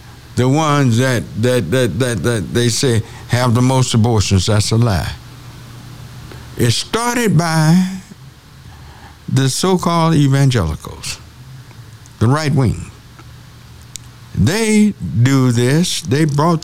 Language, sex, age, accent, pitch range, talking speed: English, male, 60-79, American, 115-155 Hz, 105 wpm